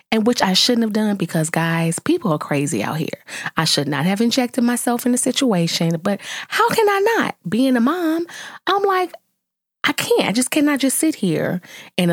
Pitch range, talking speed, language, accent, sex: 185-305 Hz, 200 wpm, English, American, female